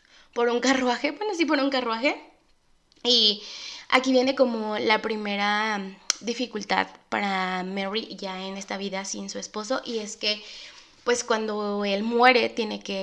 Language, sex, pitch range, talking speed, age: Spanish, female, 200-255 Hz, 150 wpm, 20-39